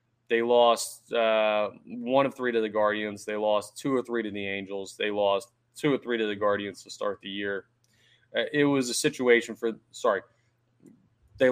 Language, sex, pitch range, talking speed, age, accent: English, male, 110-135 Hz, 195 wpm, 20-39, American